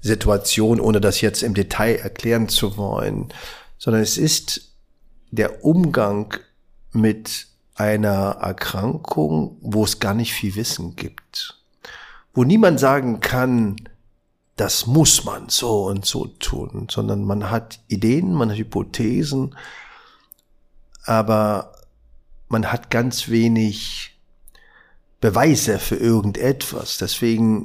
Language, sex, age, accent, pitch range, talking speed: German, male, 50-69, German, 100-120 Hz, 110 wpm